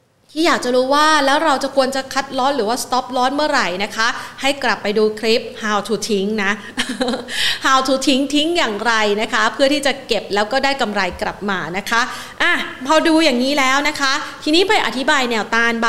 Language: Thai